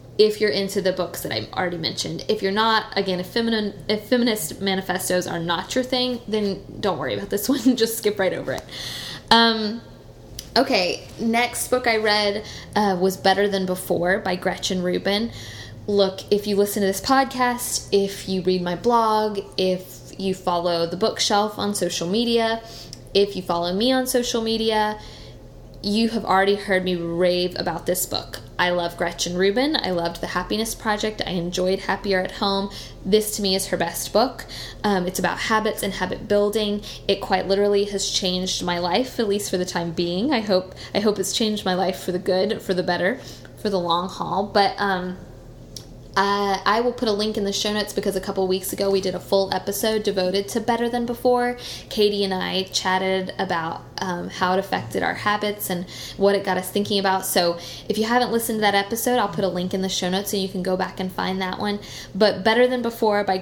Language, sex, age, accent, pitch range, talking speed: English, female, 10-29, American, 185-215 Hz, 205 wpm